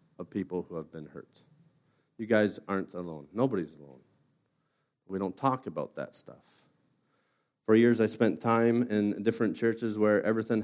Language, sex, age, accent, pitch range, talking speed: English, male, 40-59, American, 95-120 Hz, 160 wpm